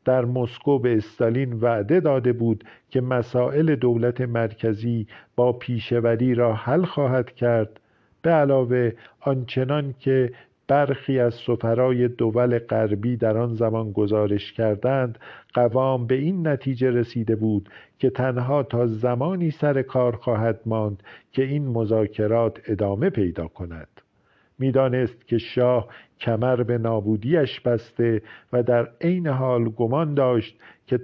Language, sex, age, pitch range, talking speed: Persian, male, 50-69, 110-130 Hz, 125 wpm